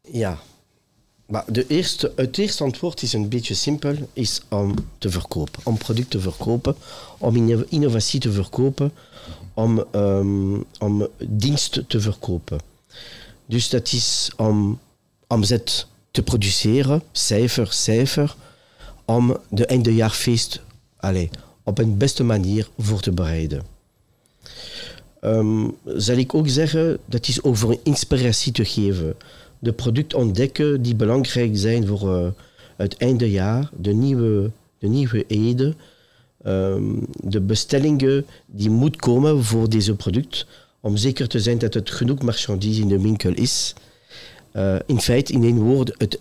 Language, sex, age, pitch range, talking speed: Dutch, male, 50-69, 105-130 Hz, 130 wpm